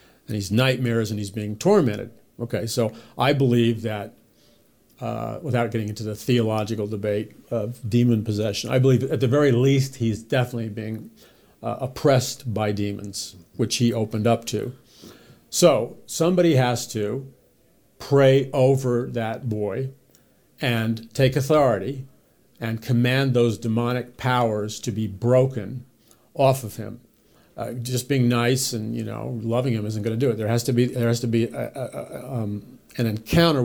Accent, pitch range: American, 110-125 Hz